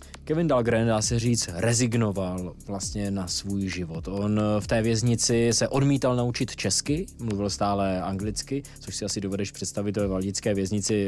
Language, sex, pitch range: Czech, male, 100-135 Hz